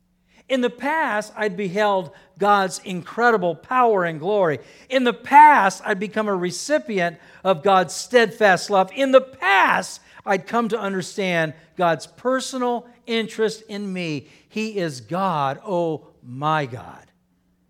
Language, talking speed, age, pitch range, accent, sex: English, 130 wpm, 50-69, 170-230 Hz, American, male